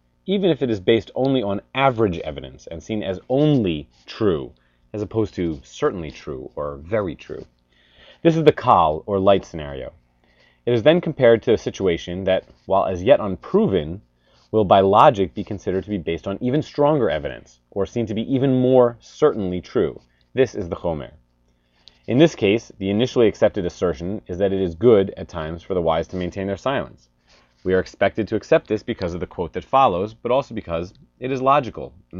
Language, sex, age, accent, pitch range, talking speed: English, male, 30-49, American, 80-115 Hz, 195 wpm